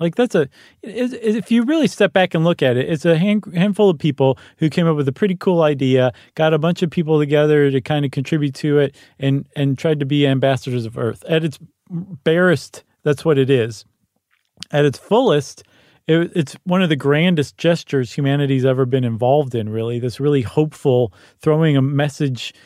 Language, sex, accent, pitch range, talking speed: English, male, American, 130-170 Hz, 200 wpm